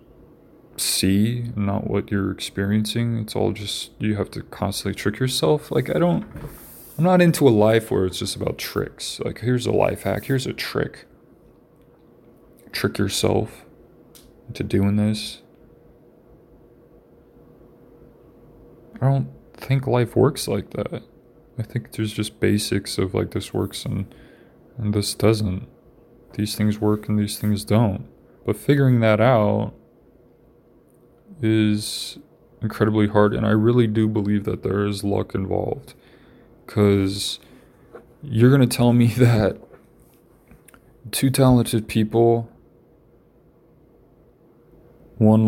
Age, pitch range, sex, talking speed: 20-39, 100-120 Hz, male, 125 wpm